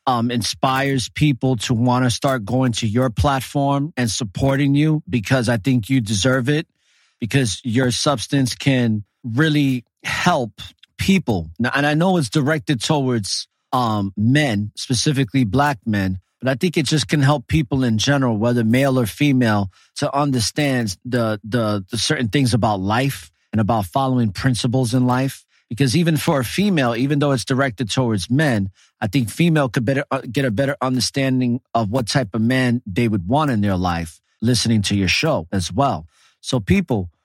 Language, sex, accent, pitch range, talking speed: English, male, American, 115-140 Hz, 170 wpm